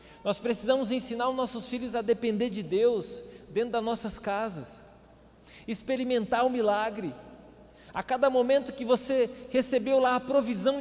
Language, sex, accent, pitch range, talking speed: Portuguese, male, Brazilian, 190-240 Hz, 145 wpm